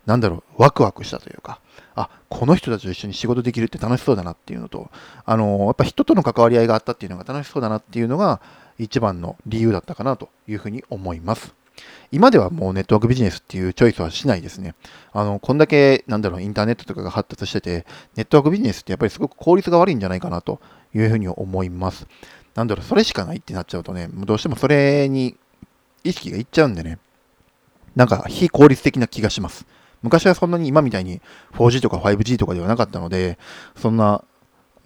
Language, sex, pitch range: Japanese, male, 95-125 Hz